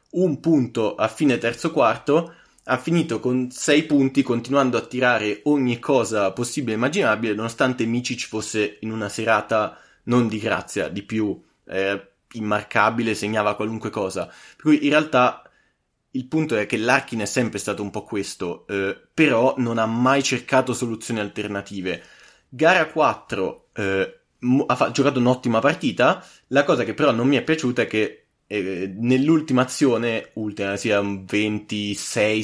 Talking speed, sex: 150 wpm, male